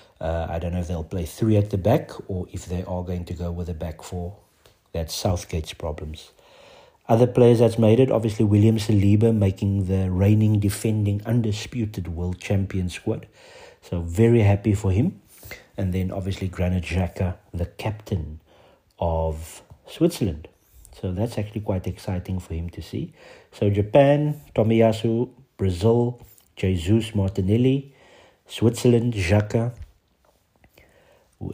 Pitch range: 90-110 Hz